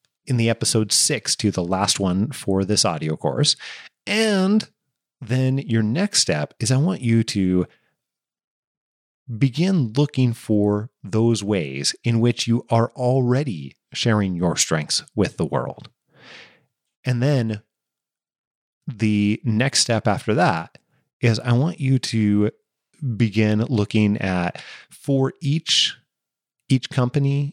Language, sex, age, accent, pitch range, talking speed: English, male, 30-49, American, 105-135 Hz, 125 wpm